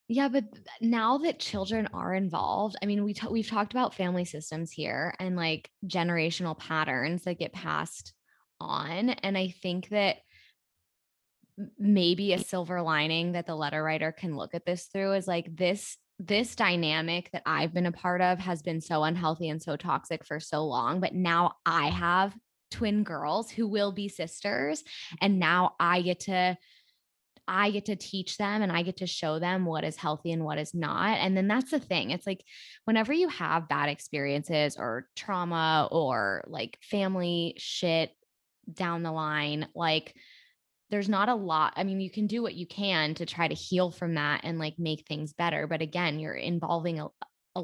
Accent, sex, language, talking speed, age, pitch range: American, female, English, 185 wpm, 10-29, 160-195 Hz